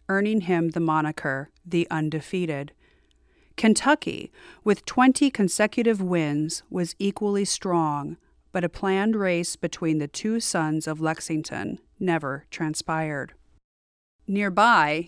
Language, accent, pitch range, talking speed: English, American, 155-195 Hz, 105 wpm